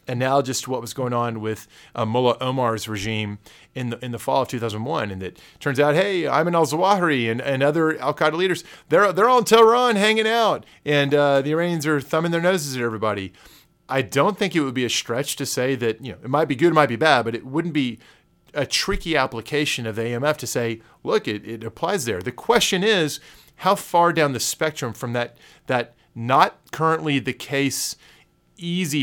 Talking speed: 215 wpm